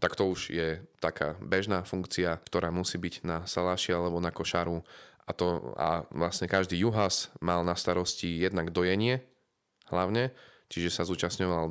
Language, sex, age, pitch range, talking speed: Slovak, male, 30-49, 85-95 Hz, 155 wpm